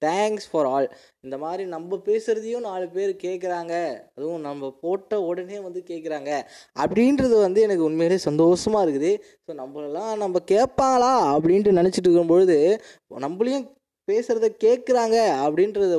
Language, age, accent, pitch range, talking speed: Tamil, 20-39, native, 135-190 Hz, 125 wpm